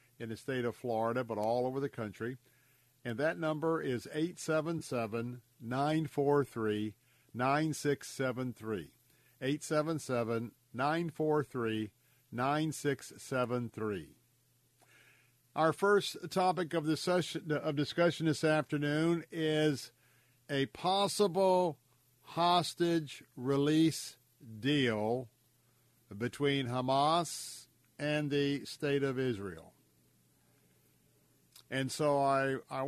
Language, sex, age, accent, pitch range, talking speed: English, male, 50-69, American, 120-150 Hz, 75 wpm